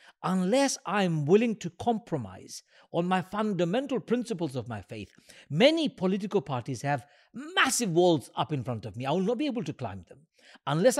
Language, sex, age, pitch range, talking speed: English, male, 60-79, 155-245 Hz, 175 wpm